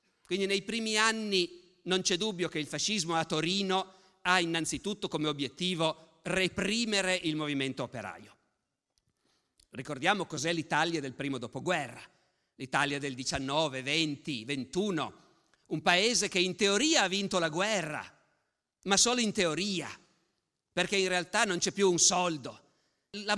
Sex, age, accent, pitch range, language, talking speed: male, 50-69, native, 155-205 Hz, Italian, 135 wpm